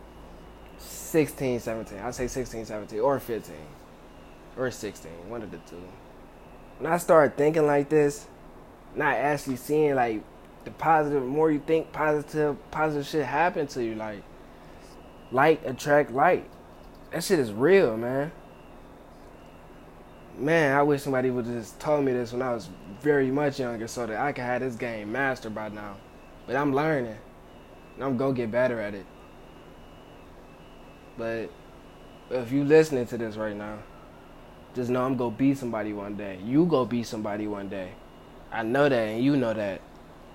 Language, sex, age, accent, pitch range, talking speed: English, male, 20-39, American, 110-140 Hz, 165 wpm